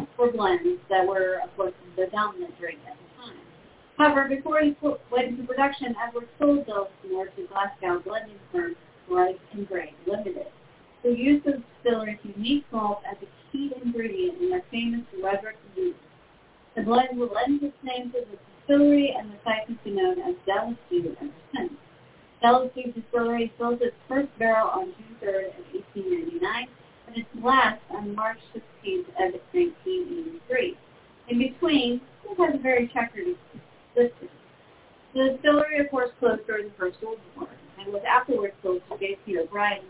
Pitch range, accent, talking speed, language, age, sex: 205-290 Hz, American, 160 wpm, English, 40-59, female